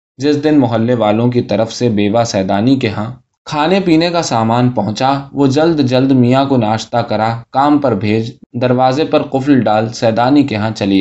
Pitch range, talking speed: 110-140 Hz, 185 wpm